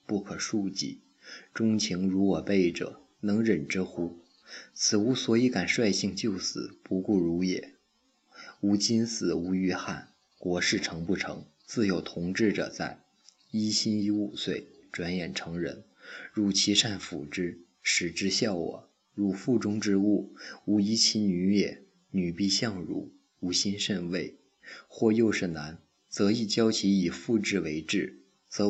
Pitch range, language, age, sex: 90-105 Hz, Chinese, 20-39, male